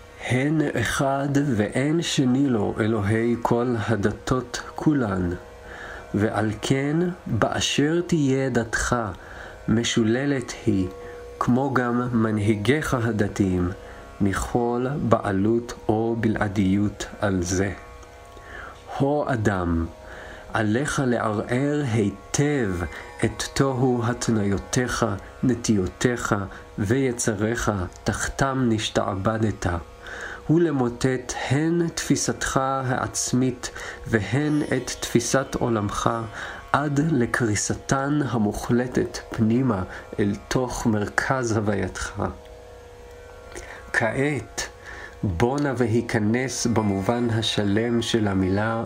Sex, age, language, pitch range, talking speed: male, 40-59, Hebrew, 100-125 Hz, 75 wpm